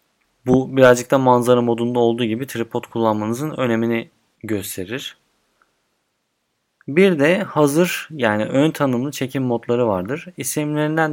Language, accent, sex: Turkish, native, male